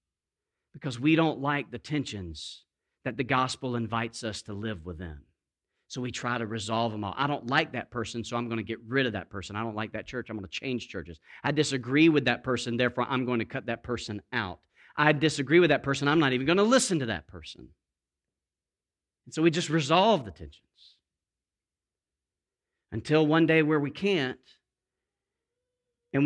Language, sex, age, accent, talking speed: English, male, 40-59, American, 195 wpm